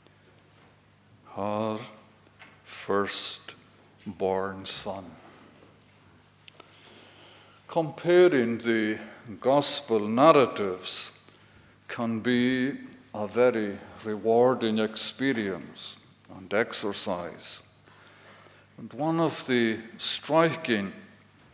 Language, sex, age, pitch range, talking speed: English, male, 60-79, 105-135 Hz, 60 wpm